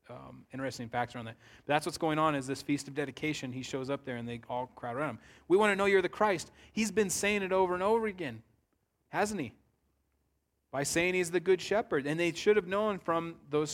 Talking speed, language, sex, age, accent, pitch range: 240 wpm, English, male, 30-49, American, 120-150 Hz